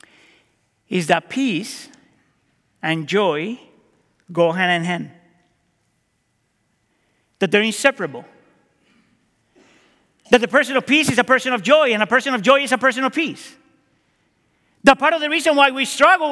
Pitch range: 200-280 Hz